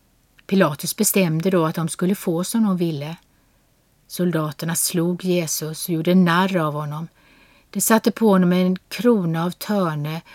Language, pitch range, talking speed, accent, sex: Swedish, 155-205 Hz, 150 wpm, native, female